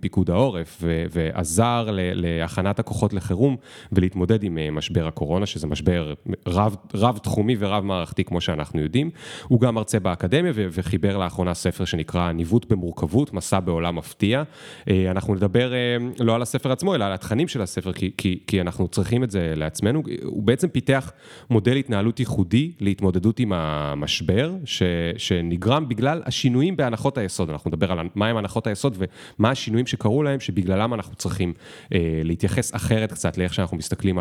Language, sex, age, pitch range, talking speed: Hebrew, male, 30-49, 90-120 Hz, 155 wpm